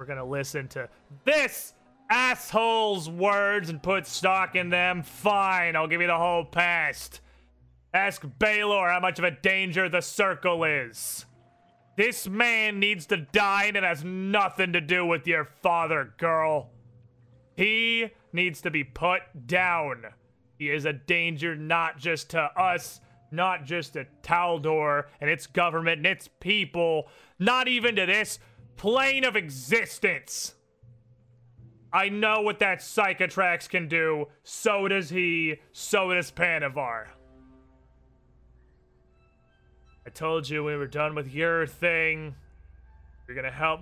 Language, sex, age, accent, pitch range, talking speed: English, male, 30-49, American, 120-180 Hz, 140 wpm